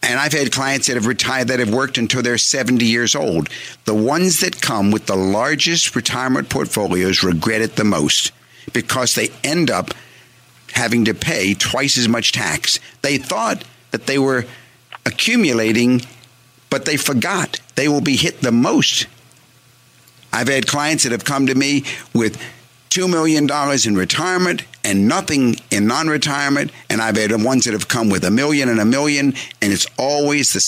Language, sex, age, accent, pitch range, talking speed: English, male, 60-79, American, 110-140 Hz, 170 wpm